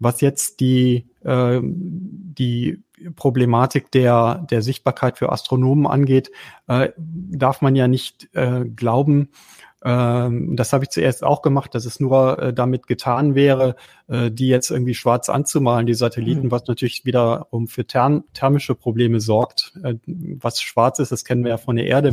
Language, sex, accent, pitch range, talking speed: German, male, German, 125-140 Hz, 140 wpm